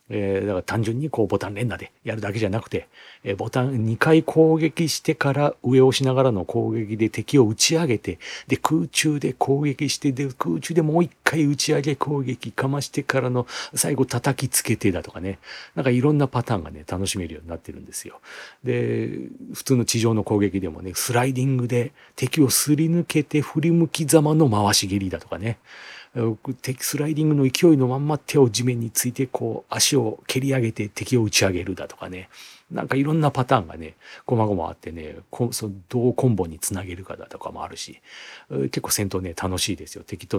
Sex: male